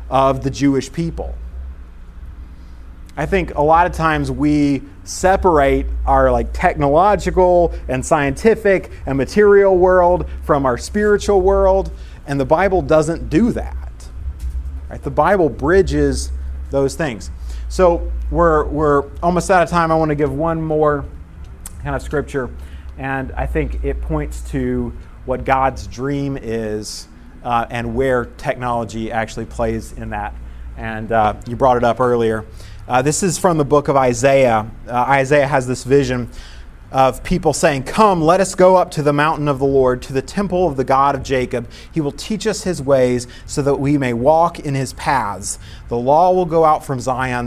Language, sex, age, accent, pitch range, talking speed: English, male, 30-49, American, 110-160 Hz, 165 wpm